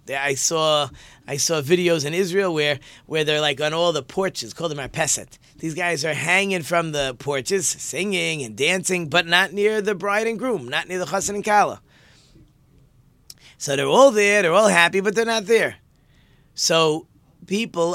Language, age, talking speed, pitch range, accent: English, 30-49, 185 wpm, 135-180 Hz, American